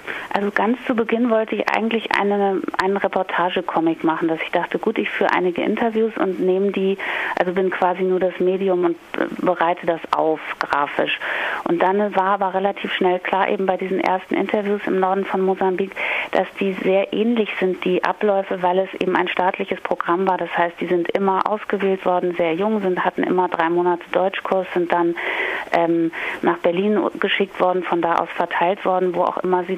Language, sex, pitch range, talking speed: German, female, 175-200 Hz, 190 wpm